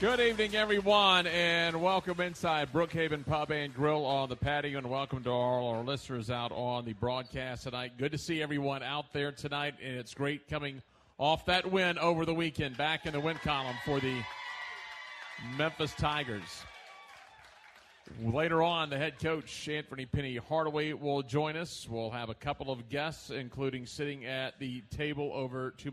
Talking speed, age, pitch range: 170 wpm, 40-59, 130-150 Hz